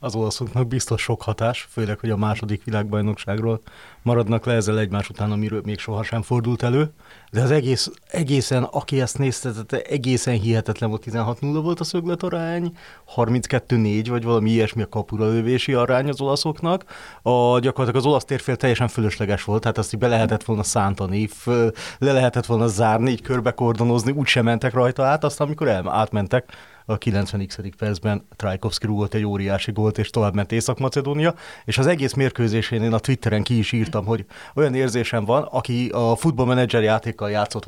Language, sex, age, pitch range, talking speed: Hungarian, male, 30-49, 110-130 Hz, 160 wpm